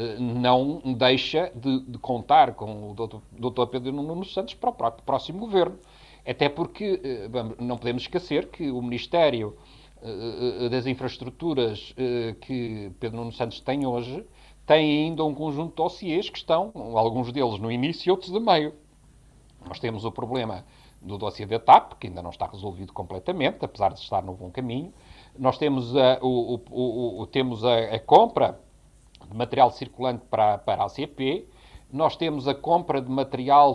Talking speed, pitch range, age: 155 wpm, 115-150 Hz, 50-69